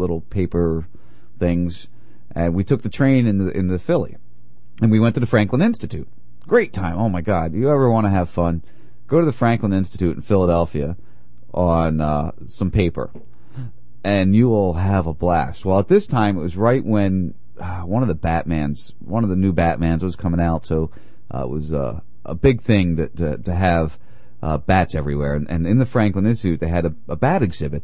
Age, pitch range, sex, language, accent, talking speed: 30-49, 80-115 Hz, male, English, American, 205 wpm